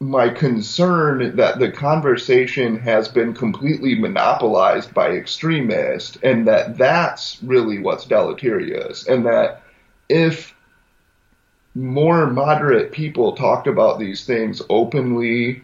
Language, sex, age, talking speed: English, male, 30-49, 105 wpm